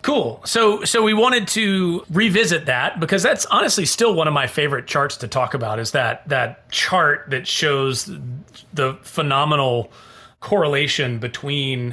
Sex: male